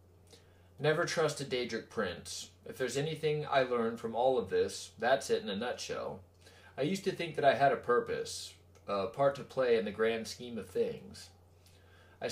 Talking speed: 190 wpm